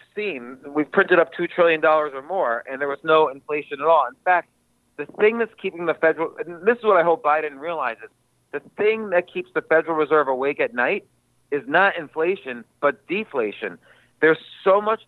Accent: American